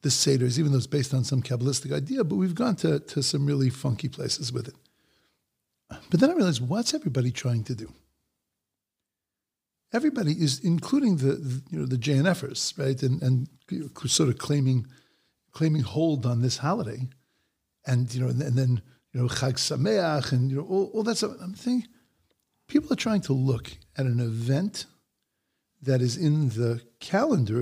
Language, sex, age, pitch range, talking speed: English, male, 50-69, 125-165 Hz, 175 wpm